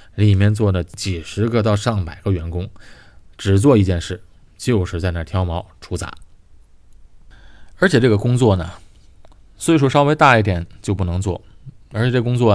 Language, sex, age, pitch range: Chinese, male, 20-39, 90-110 Hz